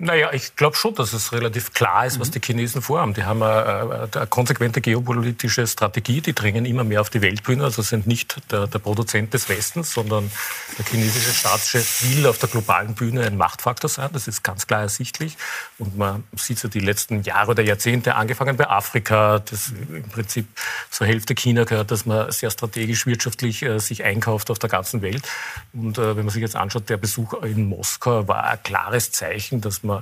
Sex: male